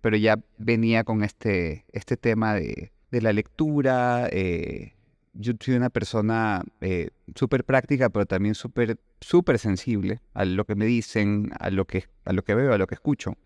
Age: 30-49